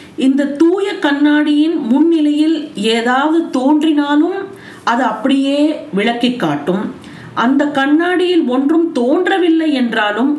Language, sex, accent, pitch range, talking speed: Tamil, female, native, 235-310 Hz, 85 wpm